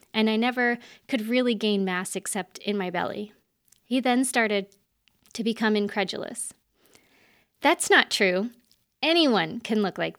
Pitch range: 190-230 Hz